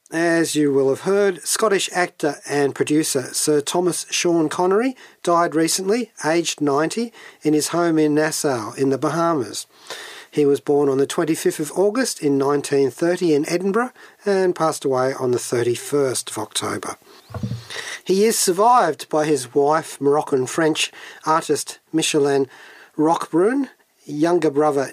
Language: English